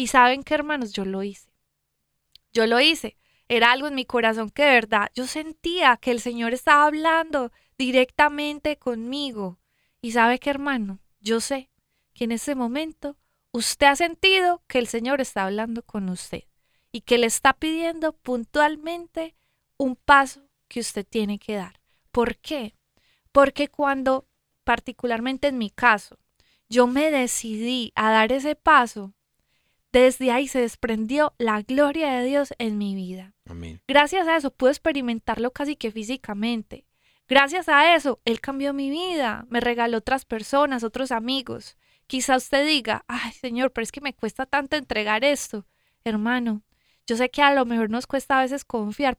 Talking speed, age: 160 wpm, 20-39